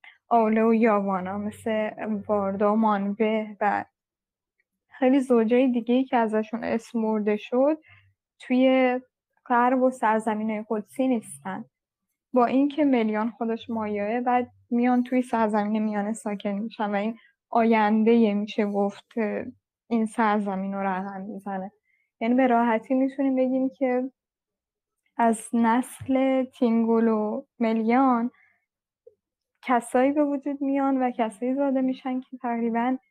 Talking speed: 110 wpm